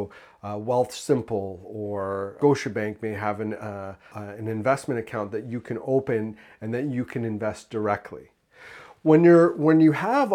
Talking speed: 170 wpm